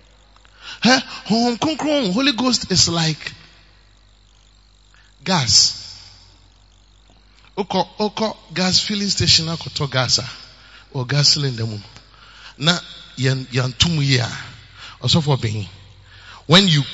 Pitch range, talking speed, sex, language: 115-180 Hz, 100 wpm, male, English